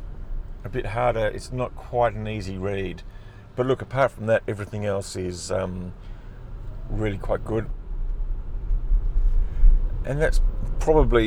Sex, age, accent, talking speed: male, 40-59, British, 130 wpm